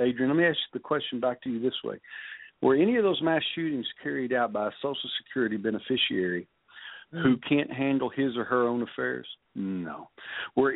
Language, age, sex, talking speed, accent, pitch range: English, 50-69, male, 190 wpm, American, 125-190 Hz